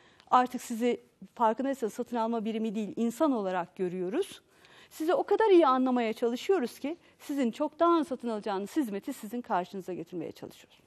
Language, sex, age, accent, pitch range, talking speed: Turkish, female, 50-69, native, 220-290 Hz, 150 wpm